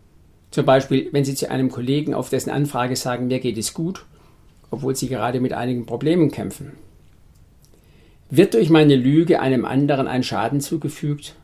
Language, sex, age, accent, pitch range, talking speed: German, male, 50-69, German, 115-150 Hz, 165 wpm